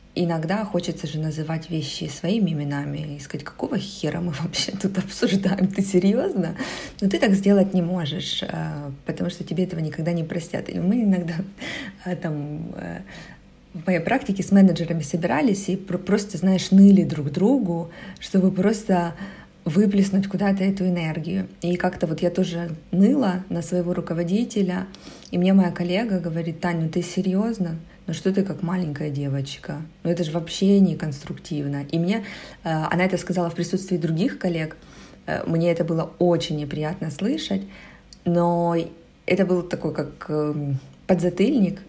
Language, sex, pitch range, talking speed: Ukrainian, female, 165-190 Hz, 145 wpm